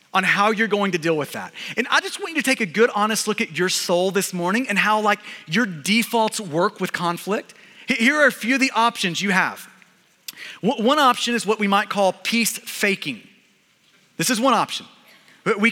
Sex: male